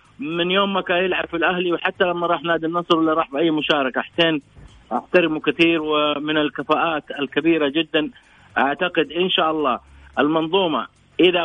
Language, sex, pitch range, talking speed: Arabic, male, 150-180 Hz, 145 wpm